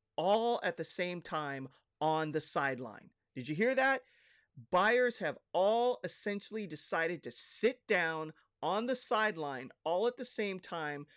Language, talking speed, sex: English, 150 wpm, male